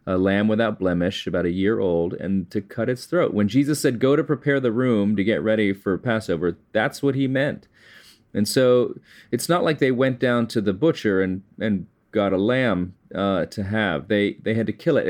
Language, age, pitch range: English, 30-49, 90-115 Hz